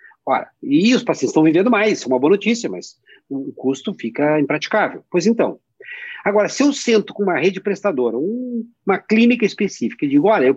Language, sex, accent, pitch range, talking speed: Portuguese, male, Brazilian, 180-235 Hz, 185 wpm